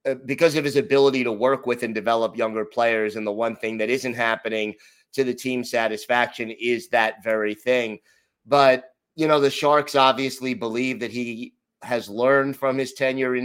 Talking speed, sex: 185 wpm, male